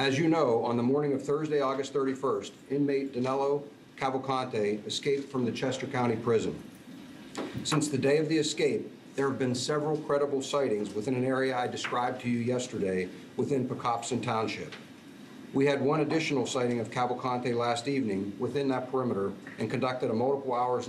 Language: English